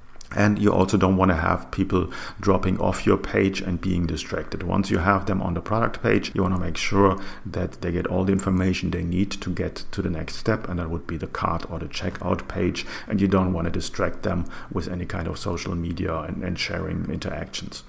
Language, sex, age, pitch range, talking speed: English, male, 40-59, 90-105 Hz, 230 wpm